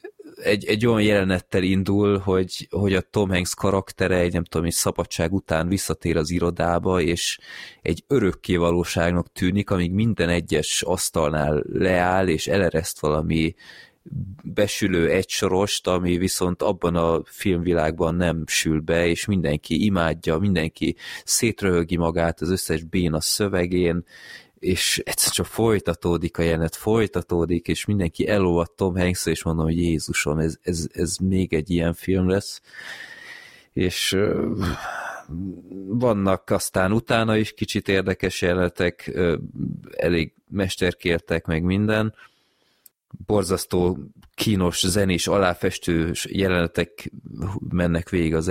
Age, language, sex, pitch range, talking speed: 20-39, Hungarian, male, 85-100 Hz, 120 wpm